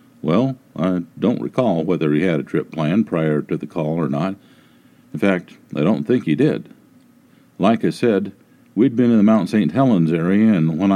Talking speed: 195 wpm